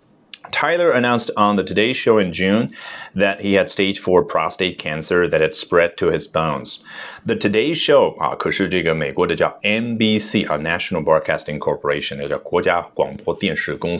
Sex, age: male, 30-49